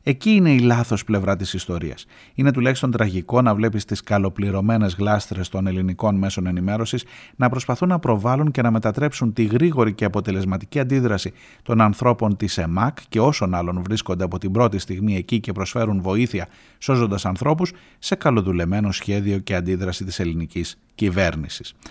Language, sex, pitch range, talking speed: Greek, male, 95-115 Hz, 155 wpm